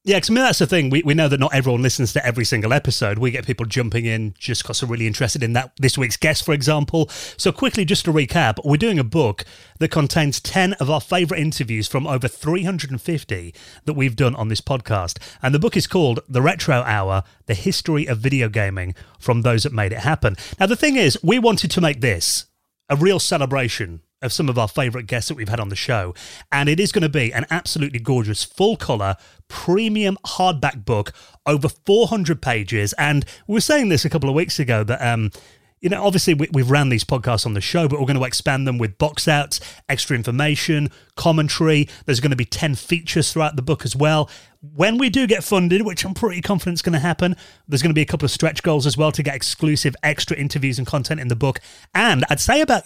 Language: English